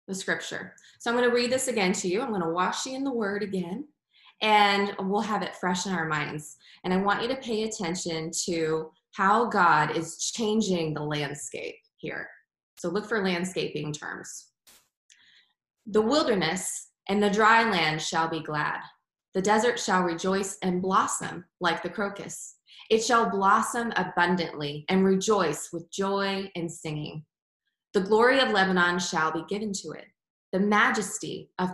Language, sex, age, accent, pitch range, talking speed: English, female, 20-39, American, 170-225 Hz, 165 wpm